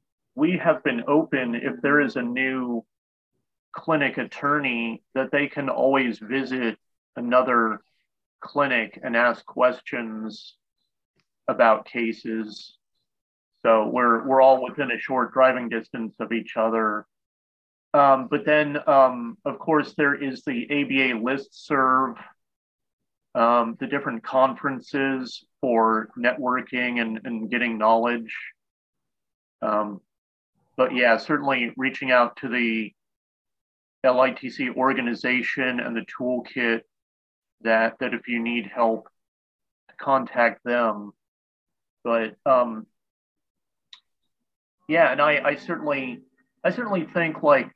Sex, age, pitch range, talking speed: male, 30-49, 115-135 Hz, 110 wpm